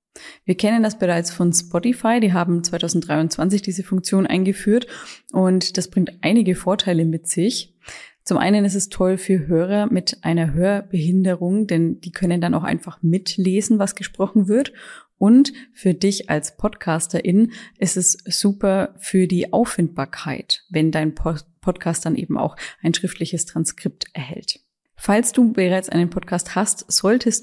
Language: German